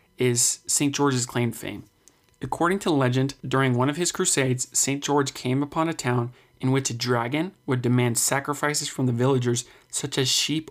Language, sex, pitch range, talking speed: English, male, 125-145 Hz, 180 wpm